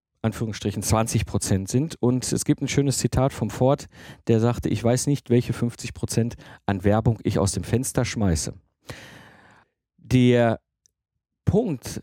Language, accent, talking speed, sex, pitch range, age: German, German, 145 wpm, male, 100-130 Hz, 50-69